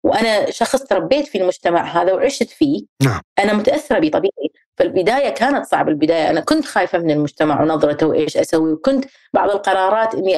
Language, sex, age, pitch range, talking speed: Arabic, female, 30-49, 180-225 Hz, 160 wpm